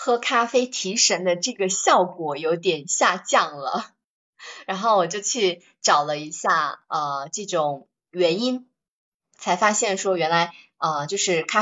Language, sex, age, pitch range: Chinese, female, 20-39, 175-215 Hz